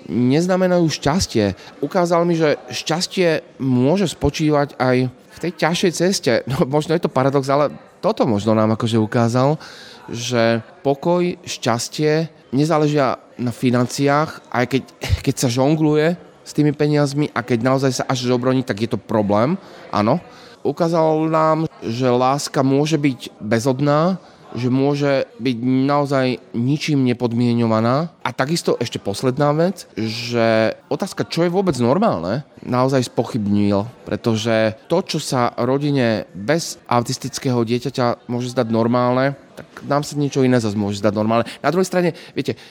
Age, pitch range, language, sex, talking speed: 30-49, 115-150 Hz, Slovak, male, 140 wpm